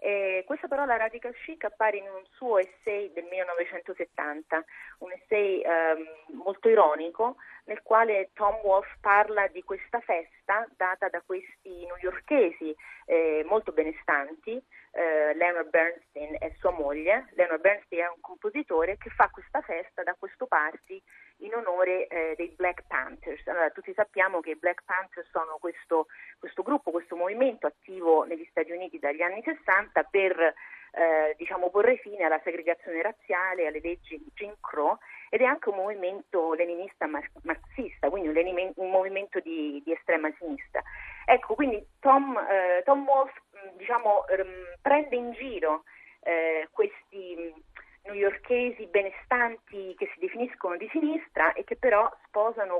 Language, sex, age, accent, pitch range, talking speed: Italian, female, 30-49, native, 170-220 Hz, 145 wpm